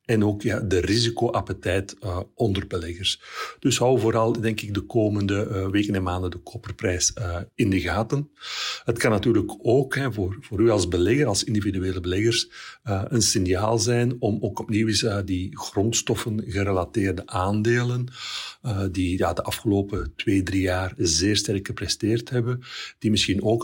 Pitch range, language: 95-115 Hz, Dutch